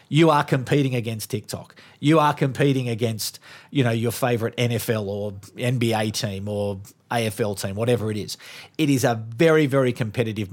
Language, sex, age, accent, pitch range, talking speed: English, male, 40-59, Australian, 110-140 Hz, 165 wpm